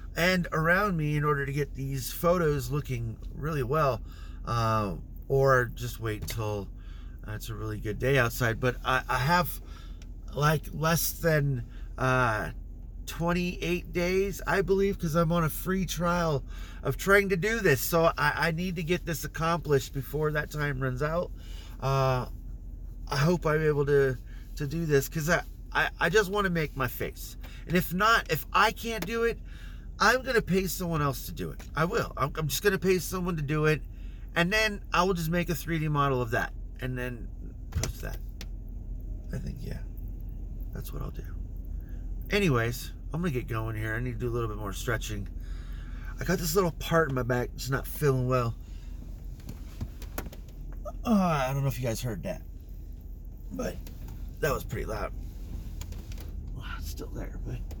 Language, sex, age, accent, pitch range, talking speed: English, male, 30-49, American, 105-170 Hz, 180 wpm